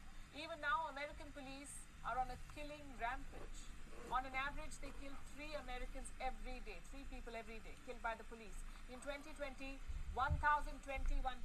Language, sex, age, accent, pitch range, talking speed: English, female, 50-69, Indian, 235-285 Hz, 150 wpm